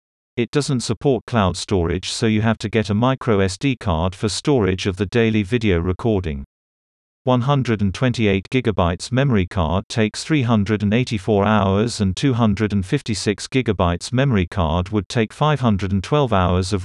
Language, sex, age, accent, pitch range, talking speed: English, male, 50-69, British, 95-120 Hz, 130 wpm